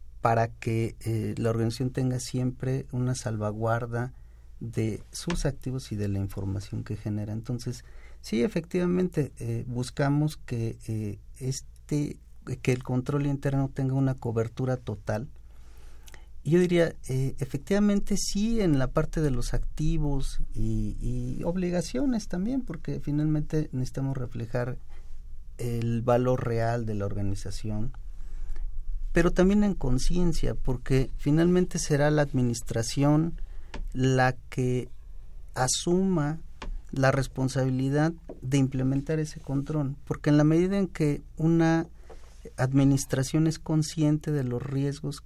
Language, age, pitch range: Spanish, 40-59, 115-150 Hz